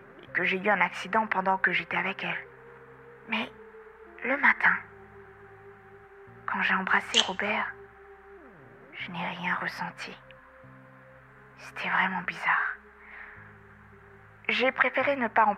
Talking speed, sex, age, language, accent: 110 wpm, female, 20-39, French, French